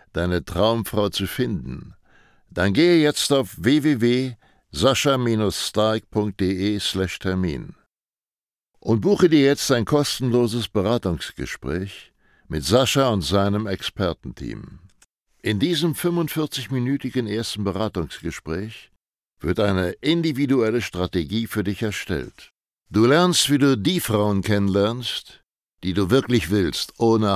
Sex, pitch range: male, 100-130 Hz